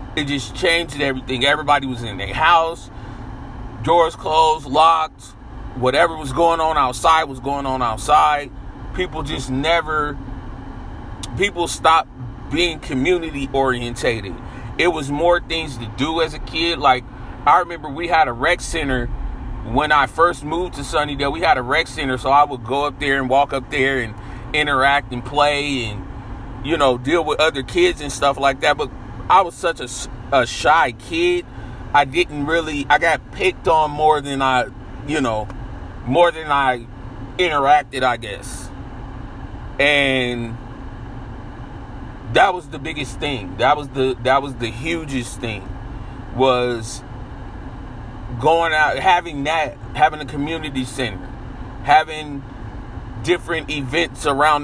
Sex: male